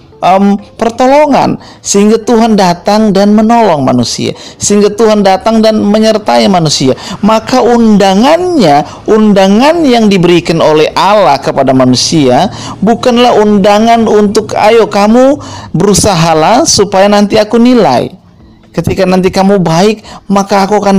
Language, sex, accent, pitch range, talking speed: Indonesian, male, native, 155-215 Hz, 115 wpm